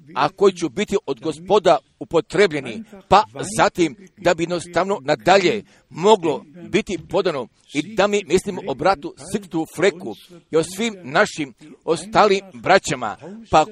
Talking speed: 135 wpm